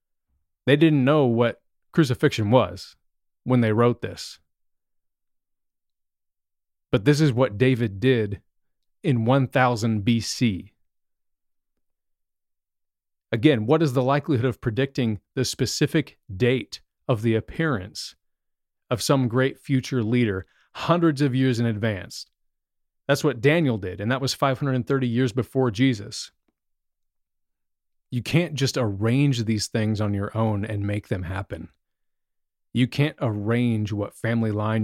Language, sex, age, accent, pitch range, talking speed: English, male, 30-49, American, 105-135 Hz, 125 wpm